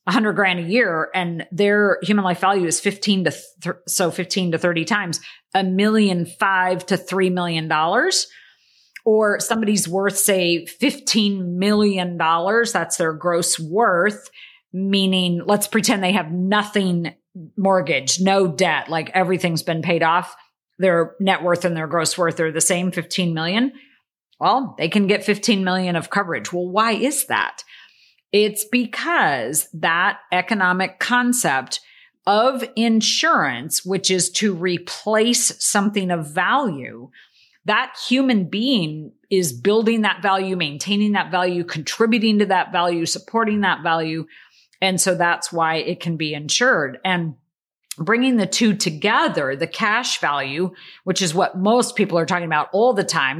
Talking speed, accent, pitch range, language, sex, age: 145 wpm, American, 170-210 Hz, English, female, 40-59